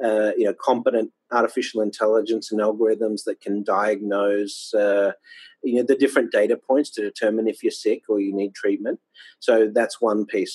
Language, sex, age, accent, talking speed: English, male, 40-59, Australian, 175 wpm